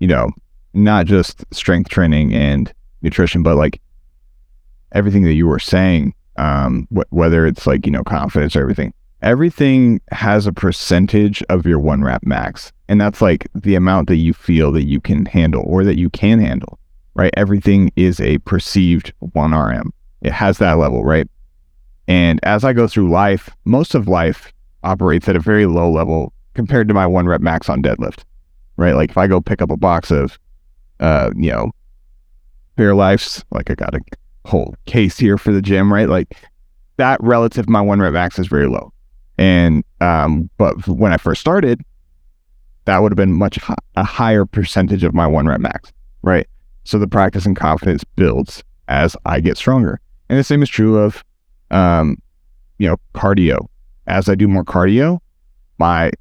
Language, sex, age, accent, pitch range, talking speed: English, male, 30-49, American, 75-100 Hz, 180 wpm